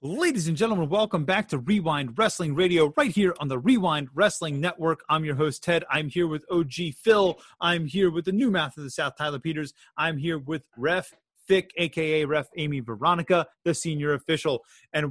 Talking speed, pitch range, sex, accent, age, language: 195 wpm, 135-180 Hz, male, American, 30-49, English